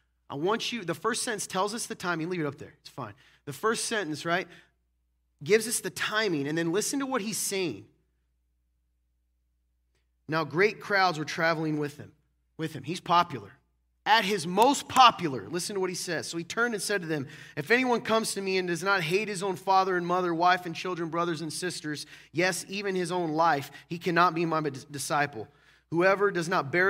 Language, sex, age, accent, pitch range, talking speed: English, male, 30-49, American, 145-200 Hz, 205 wpm